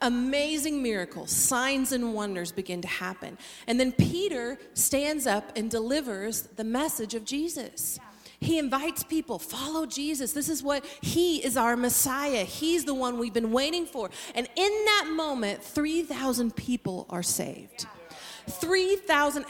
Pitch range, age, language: 220-300 Hz, 40-59, English